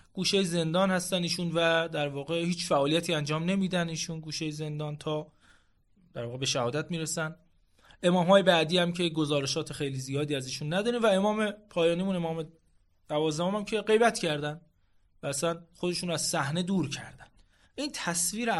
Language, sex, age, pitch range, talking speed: Persian, male, 30-49, 140-185 Hz, 160 wpm